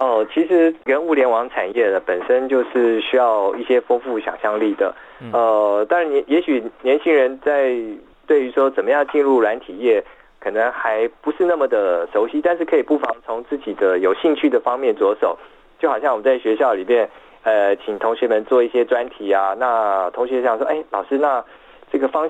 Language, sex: Chinese, male